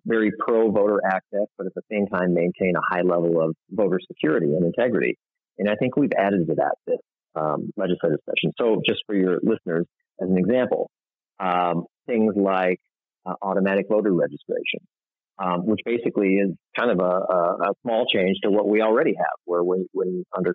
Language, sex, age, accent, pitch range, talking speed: English, male, 40-59, American, 90-110 Hz, 185 wpm